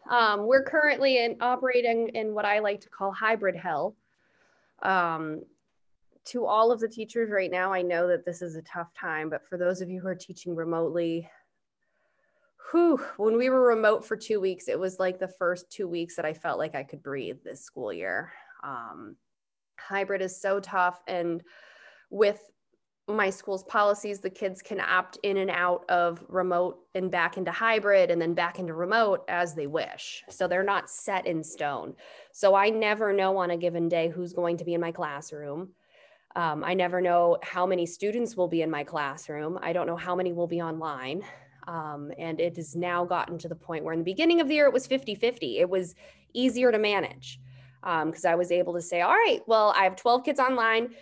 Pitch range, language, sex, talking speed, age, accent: 175-220 Hz, English, female, 205 wpm, 20-39, American